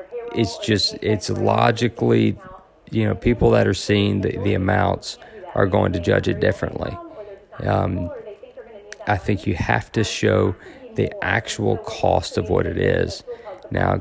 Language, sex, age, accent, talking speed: English, male, 40-59, American, 145 wpm